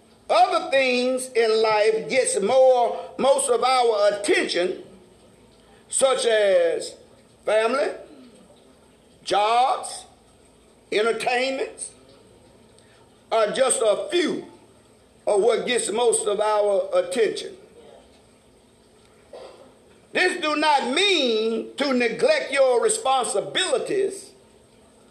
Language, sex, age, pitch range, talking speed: English, male, 50-69, 245-405 Hz, 80 wpm